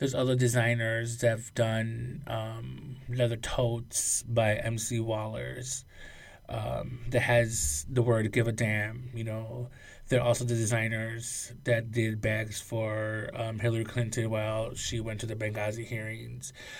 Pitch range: 110-125 Hz